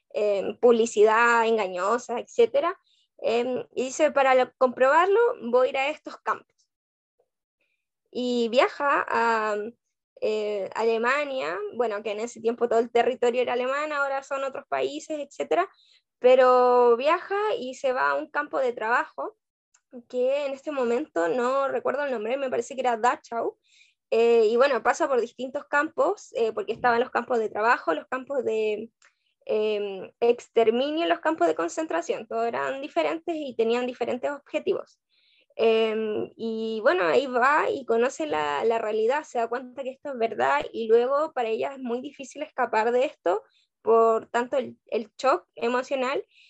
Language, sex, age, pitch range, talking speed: Spanish, female, 10-29, 230-290 Hz, 160 wpm